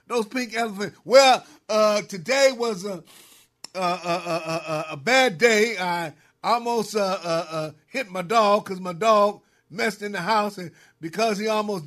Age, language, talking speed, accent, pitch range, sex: 50-69, English, 165 wpm, American, 200-270 Hz, male